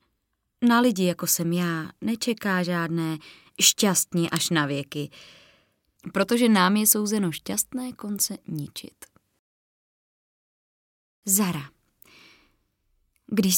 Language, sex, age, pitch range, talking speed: Czech, female, 20-39, 170-225 Hz, 90 wpm